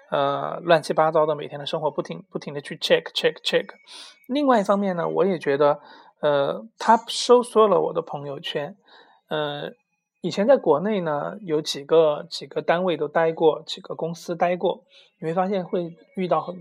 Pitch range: 160-220 Hz